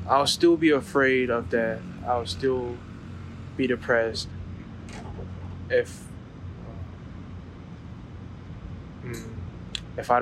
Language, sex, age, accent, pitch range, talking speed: English, male, 20-39, American, 90-120 Hz, 75 wpm